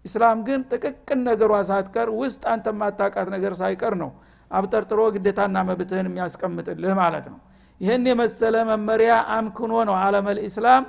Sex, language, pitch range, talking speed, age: male, Amharic, 195-230 Hz, 145 wpm, 50-69